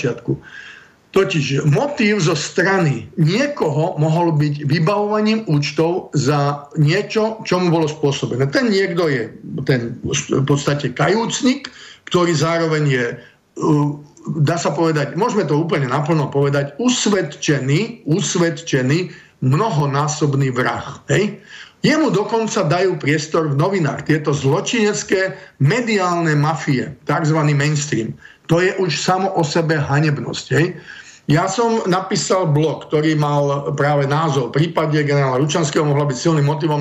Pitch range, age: 145-180 Hz, 50-69